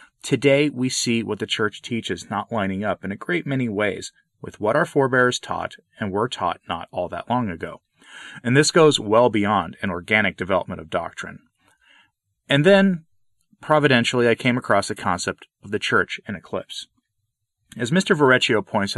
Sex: male